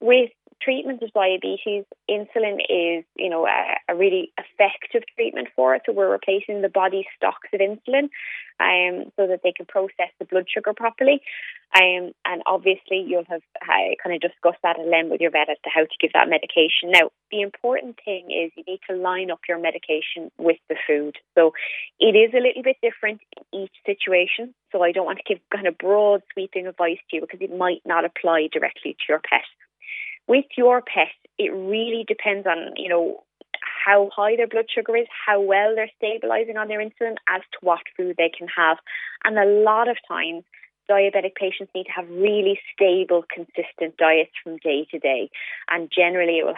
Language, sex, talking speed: English, female, 195 wpm